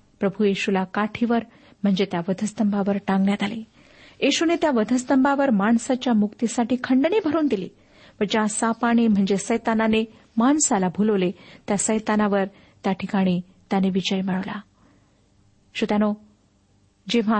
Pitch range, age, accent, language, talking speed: 195-235 Hz, 50-69, native, Marathi, 105 wpm